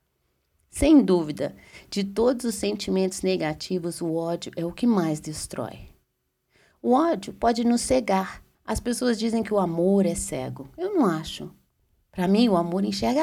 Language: Portuguese